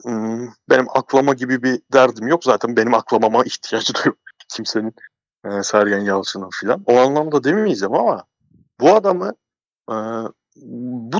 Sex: male